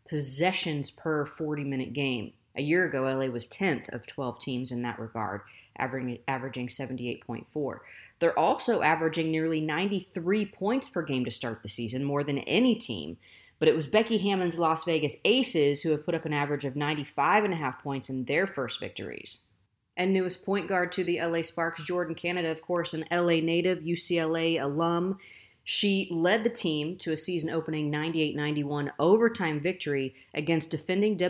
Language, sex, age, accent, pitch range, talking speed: English, female, 30-49, American, 135-170 Hz, 165 wpm